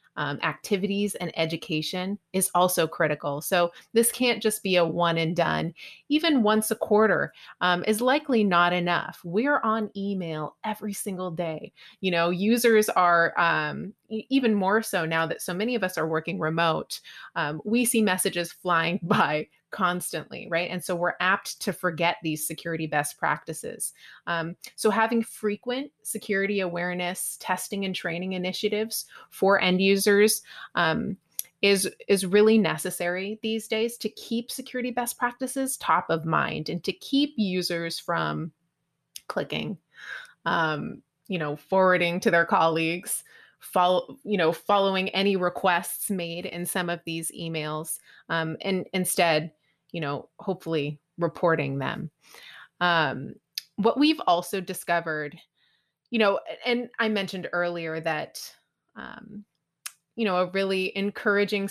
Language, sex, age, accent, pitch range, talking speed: English, female, 30-49, American, 170-215 Hz, 140 wpm